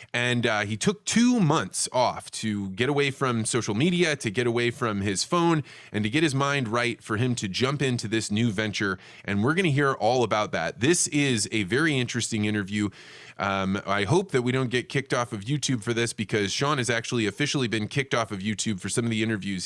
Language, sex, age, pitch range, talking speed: English, male, 20-39, 110-145 Hz, 225 wpm